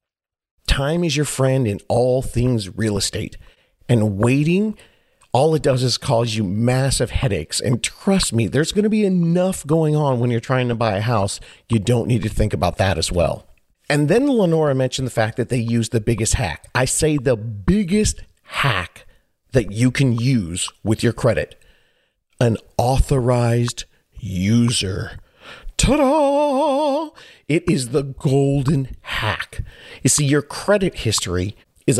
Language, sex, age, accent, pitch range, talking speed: English, male, 40-59, American, 115-150 Hz, 160 wpm